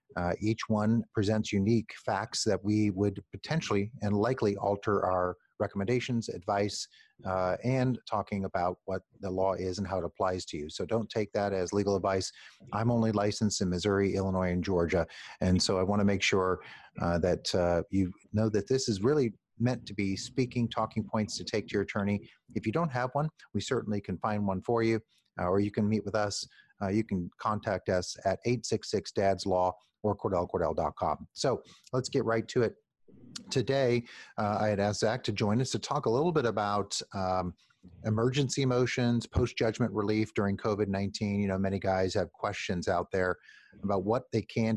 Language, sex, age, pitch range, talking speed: English, male, 40-59, 95-115 Hz, 185 wpm